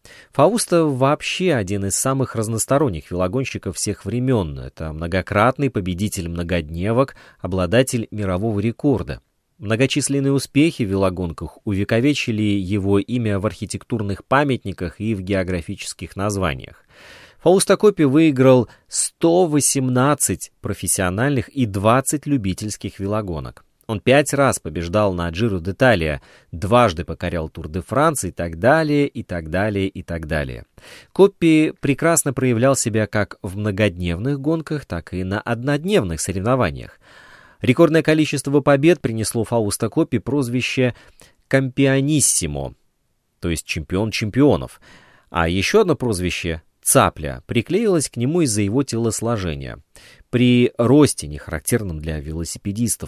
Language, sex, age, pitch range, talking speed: Russian, male, 20-39, 95-135 Hz, 115 wpm